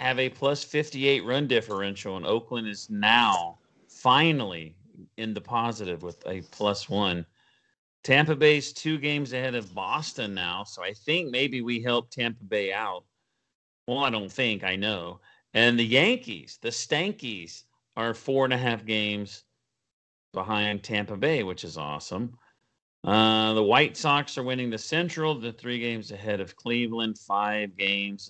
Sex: male